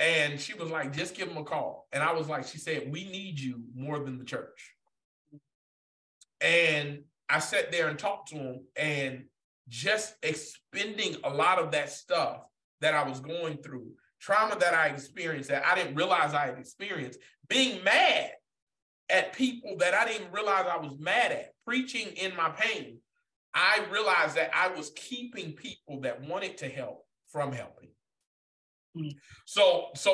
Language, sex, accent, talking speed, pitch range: English, male, American, 170 wpm, 150-200 Hz